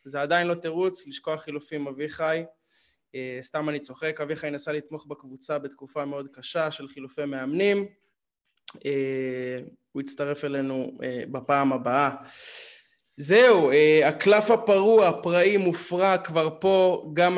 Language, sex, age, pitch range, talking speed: Hebrew, male, 20-39, 145-170 Hz, 115 wpm